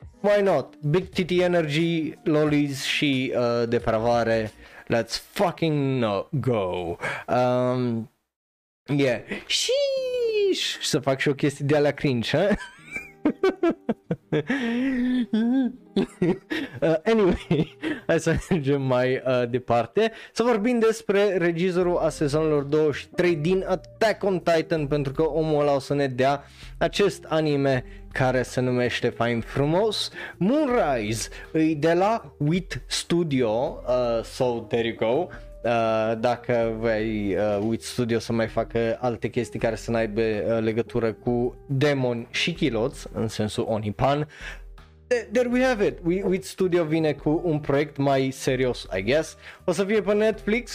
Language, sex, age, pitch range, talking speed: Romanian, male, 20-39, 115-170 Hz, 135 wpm